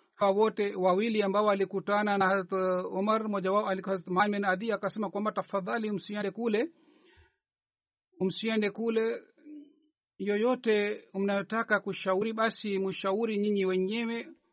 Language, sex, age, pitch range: Swahili, male, 50-69, 190-215 Hz